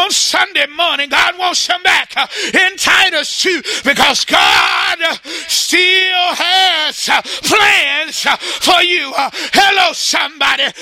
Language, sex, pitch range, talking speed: English, male, 285-370 Hz, 130 wpm